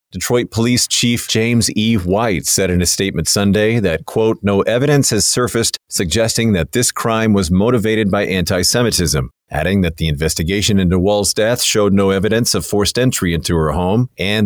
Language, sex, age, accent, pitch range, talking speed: English, male, 40-59, American, 90-110 Hz, 175 wpm